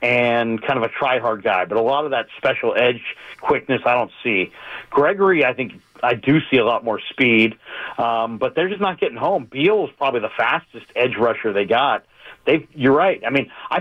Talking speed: 210 wpm